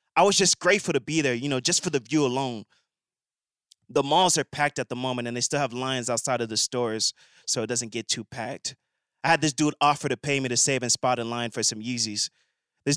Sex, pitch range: male, 125-155 Hz